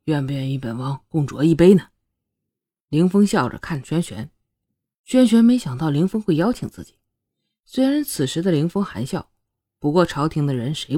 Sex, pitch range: female, 135-200 Hz